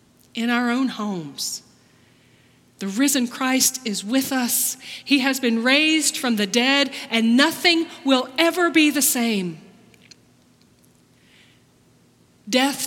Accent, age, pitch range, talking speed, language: American, 40-59, 210-275 Hz, 115 wpm, English